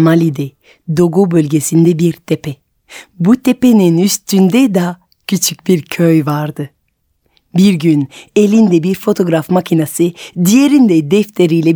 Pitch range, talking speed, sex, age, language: 160-205 Hz, 105 wpm, female, 30-49, Turkish